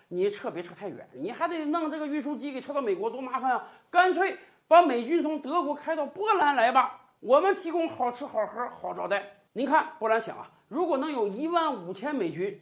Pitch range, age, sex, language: 230-330 Hz, 50-69, male, Chinese